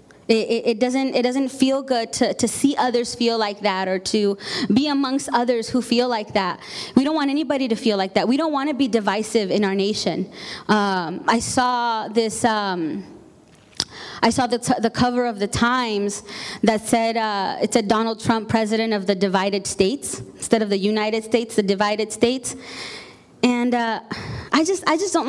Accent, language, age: American, English, 20-39